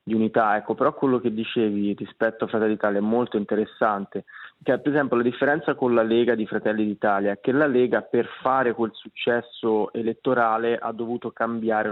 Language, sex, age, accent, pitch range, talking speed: Italian, male, 20-39, native, 105-125 Hz, 185 wpm